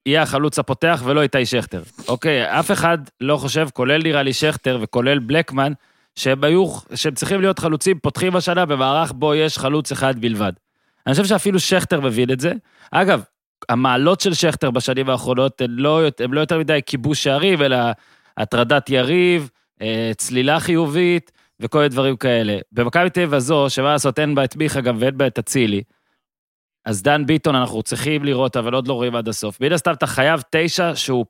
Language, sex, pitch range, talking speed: Hebrew, male, 130-170 Hz, 180 wpm